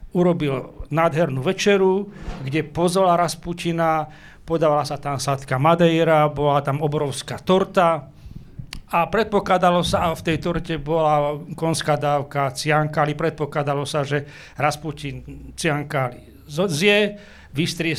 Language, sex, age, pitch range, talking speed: Slovak, male, 40-59, 150-200 Hz, 110 wpm